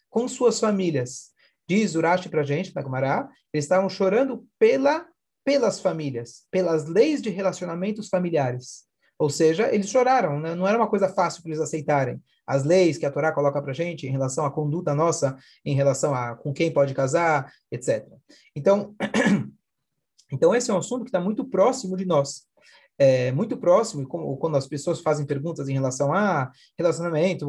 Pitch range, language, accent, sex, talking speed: 145-210 Hz, Portuguese, Brazilian, male, 170 wpm